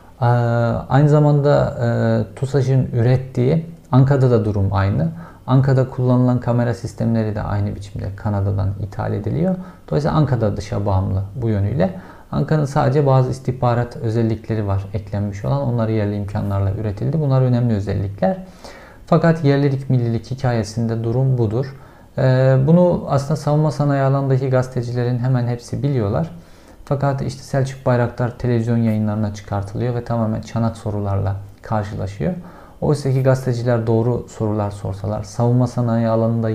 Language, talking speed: Turkish, 130 wpm